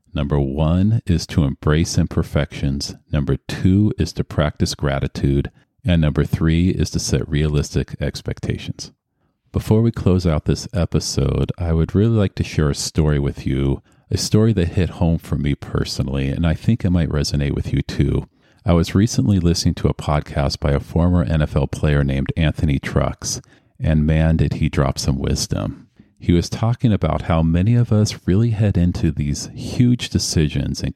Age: 40-59